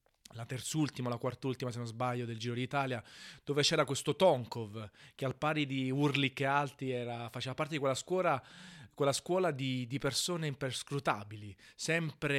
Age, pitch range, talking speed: 30-49, 125-150 Hz, 170 wpm